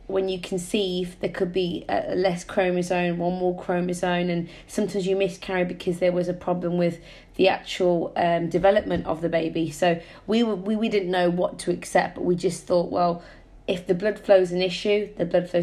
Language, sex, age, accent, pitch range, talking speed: English, female, 20-39, British, 170-195 Hz, 200 wpm